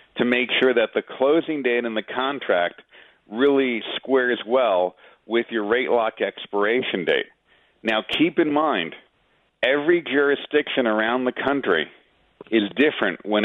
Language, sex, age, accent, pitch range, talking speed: English, male, 40-59, American, 115-140 Hz, 140 wpm